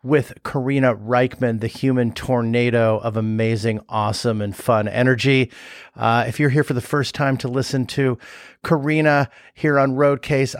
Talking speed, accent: 155 wpm, American